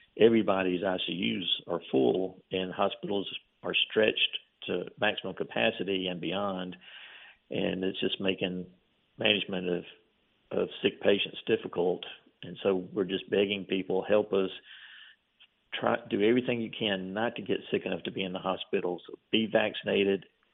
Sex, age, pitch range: male, 50-69, 95-105 Hz